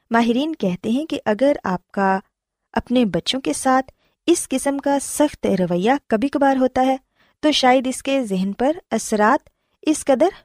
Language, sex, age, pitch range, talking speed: Urdu, female, 20-39, 195-275 Hz, 165 wpm